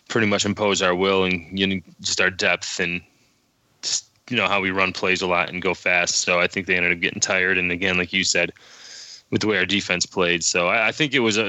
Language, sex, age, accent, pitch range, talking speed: English, male, 20-39, American, 95-105 Hz, 240 wpm